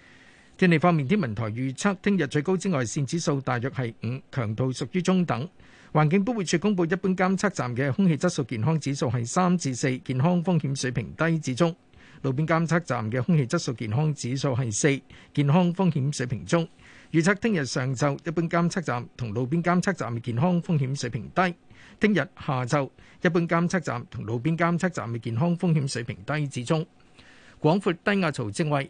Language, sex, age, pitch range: Chinese, male, 50-69, 130-175 Hz